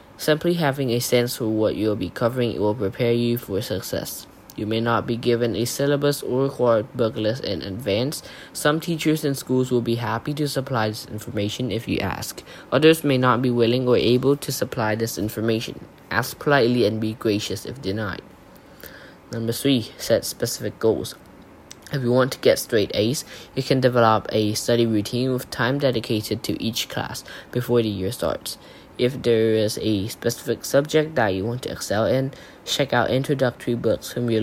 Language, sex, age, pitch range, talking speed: English, male, 10-29, 115-135 Hz, 185 wpm